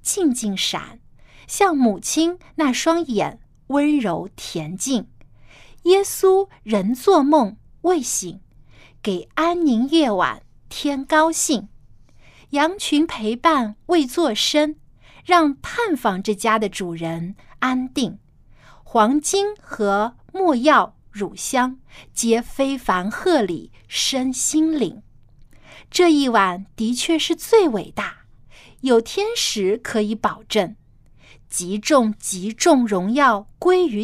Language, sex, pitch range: Chinese, female, 205-320 Hz